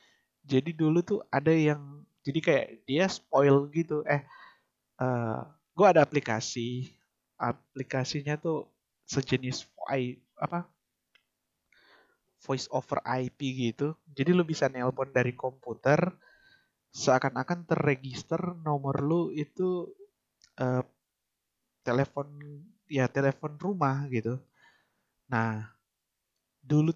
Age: 20-39